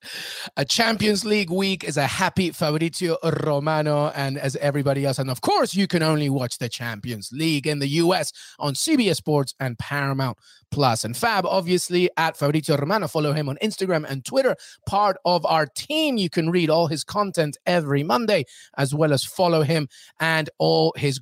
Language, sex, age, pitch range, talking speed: English, male, 30-49, 145-175 Hz, 180 wpm